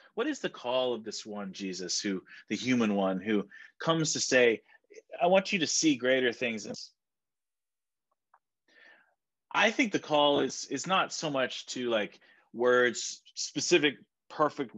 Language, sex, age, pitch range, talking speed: English, male, 30-49, 105-145 Hz, 150 wpm